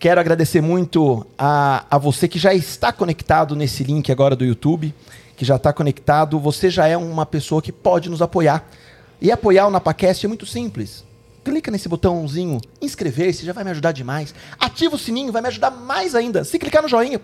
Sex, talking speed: male, 195 wpm